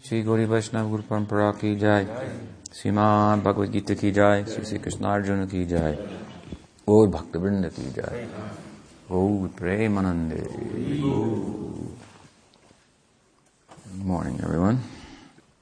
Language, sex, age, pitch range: English, male, 50-69, 80-105 Hz